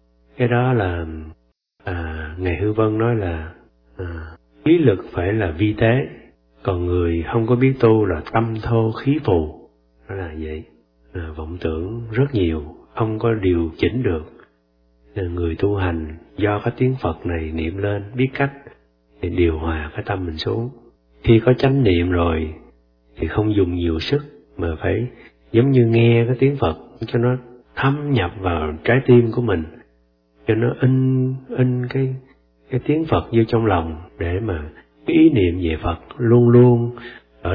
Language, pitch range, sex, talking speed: Vietnamese, 80-115 Hz, male, 170 wpm